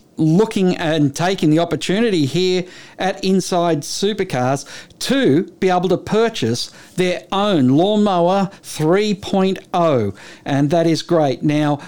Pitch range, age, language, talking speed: 155-195 Hz, 50-69, English, 115 wpm